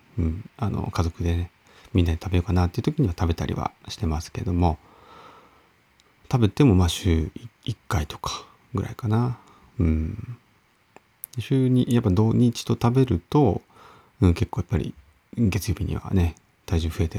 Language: Japanese